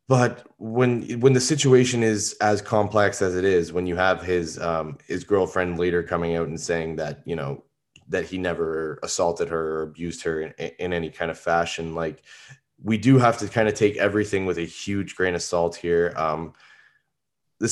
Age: 20-39